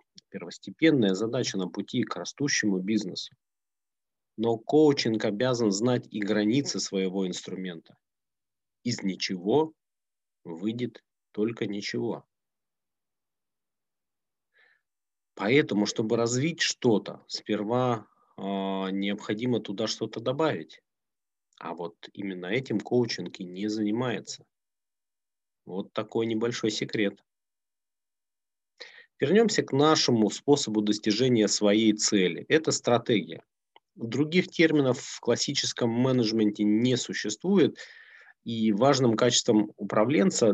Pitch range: 105-125 Hz